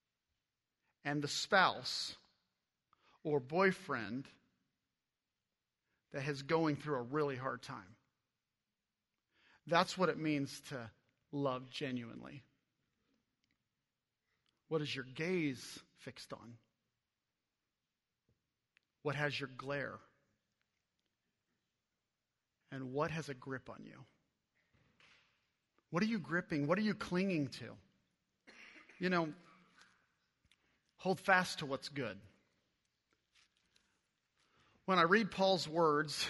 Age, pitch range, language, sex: 40-59, 140-180 Hz, English, male